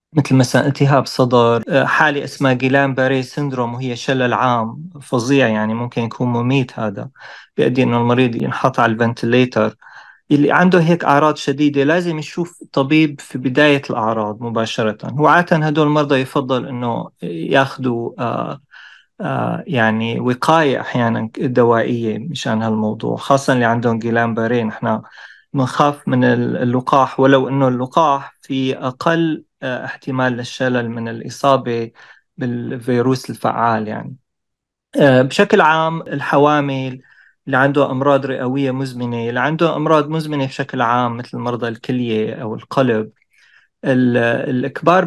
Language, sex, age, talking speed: Arabic, male, 30-49, 120 wpm